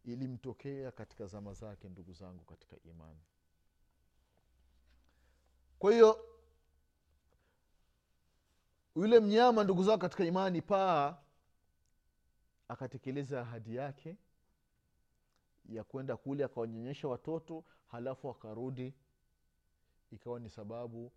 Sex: male